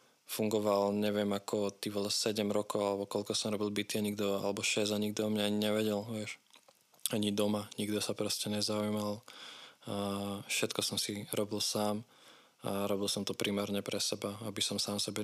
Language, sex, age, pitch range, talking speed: Slovak, male, 20-39, 100-105 Hz, 175 wpm